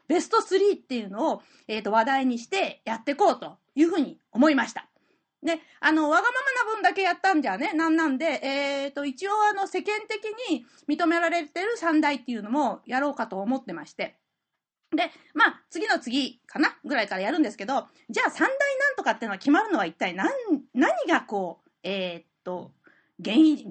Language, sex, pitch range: Japanese, female, 225-330 Hz